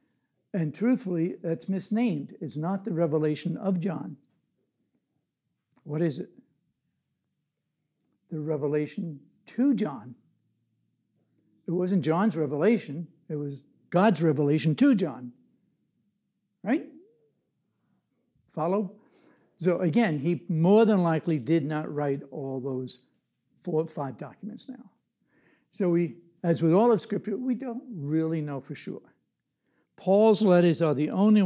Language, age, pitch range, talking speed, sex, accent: English, 60-79, 150-200 Hz, 120 wpm, male, American